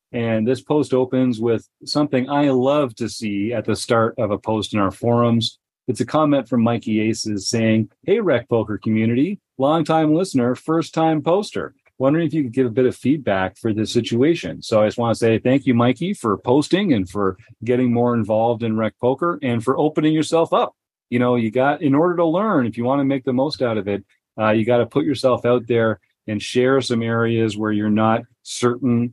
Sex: male